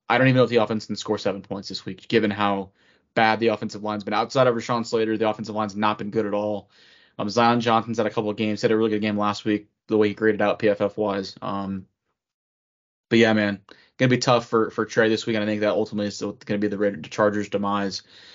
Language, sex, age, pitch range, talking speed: English, male, 20-39, 105-120 Hz, 260 wpm